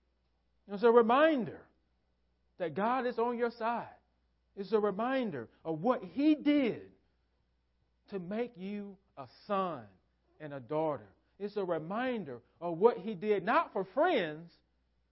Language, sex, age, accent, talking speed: English, male, 40-59, American, 135 wpm